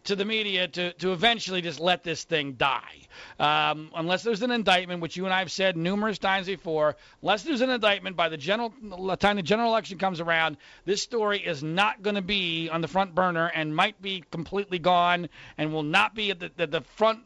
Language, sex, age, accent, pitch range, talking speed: English, male, 40-59, American, 175-240 Hz, 215 wpm